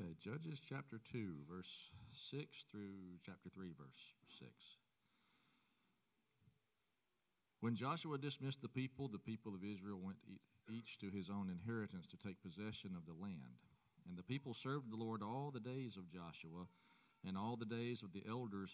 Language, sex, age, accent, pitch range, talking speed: English, male, 40-59, American, 95-120 Hz, 155 wpm